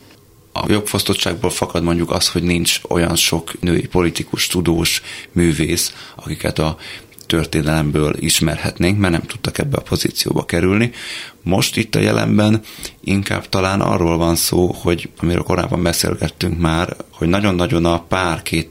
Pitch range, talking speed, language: 85-100 Hz, 135 wpm, Hungarian